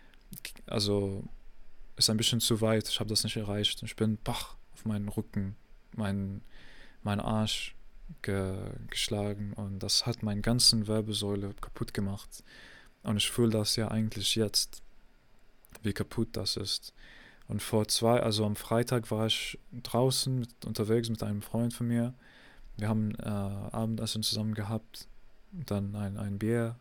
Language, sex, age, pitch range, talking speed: English, male, 20-39, 105-115 Hz, 150 wpm